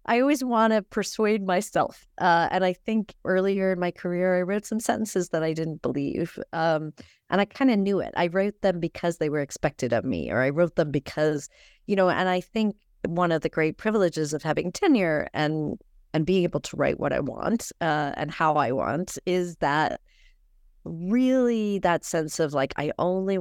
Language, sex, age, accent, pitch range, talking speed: English, female, 40-59, American, 150-195 Hz, 205 wpm